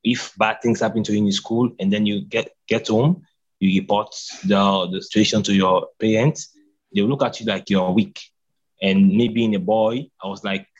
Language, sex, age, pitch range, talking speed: English, male, 20-39, 95-115 Hz, 205 wpm